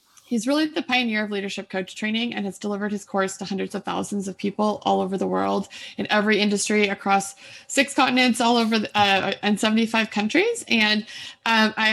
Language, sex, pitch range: English, female, 195-235 Hz